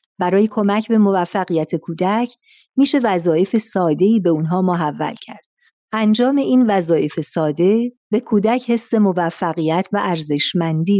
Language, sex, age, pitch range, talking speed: Persian, female, 50-69, 175-225 Hz, 120 wpm